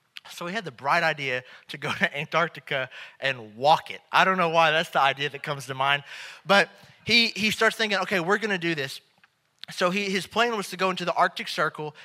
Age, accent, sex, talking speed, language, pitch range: 30-49, American, male, 230 wpm, English, 155-195 Hz